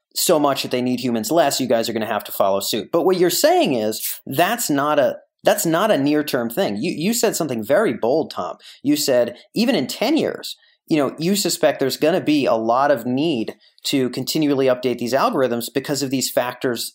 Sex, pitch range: male, 115-155 Hz